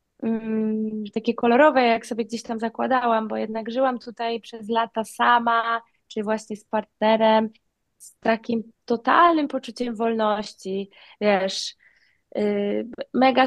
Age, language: 20-39, Polish